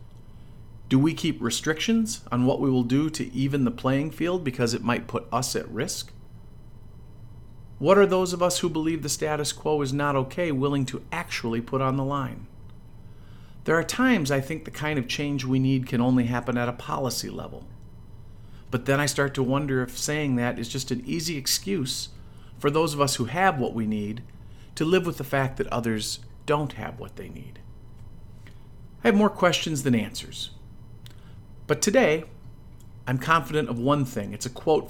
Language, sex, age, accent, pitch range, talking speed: English, male, 50-69, American, 115-145 Hz, 190 wpm